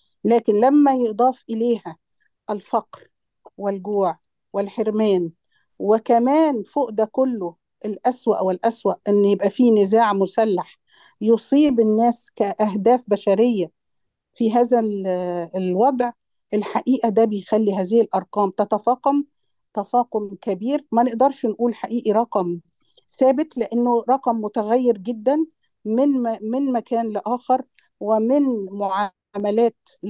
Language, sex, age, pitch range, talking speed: Arabic, female, 50-69, 205-245 Hz, 100 wpm